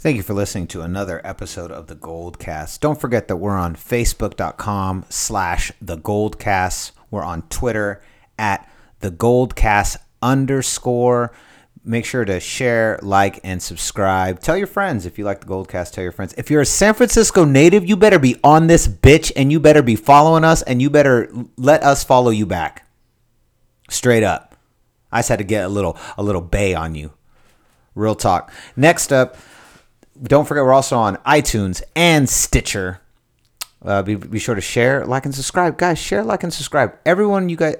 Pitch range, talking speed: 95-140 Hz, 180 wpm